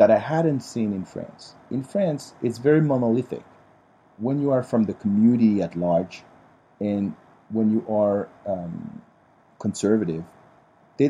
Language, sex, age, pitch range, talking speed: English, male, 40-59, 105-150 Hz, 140 wpm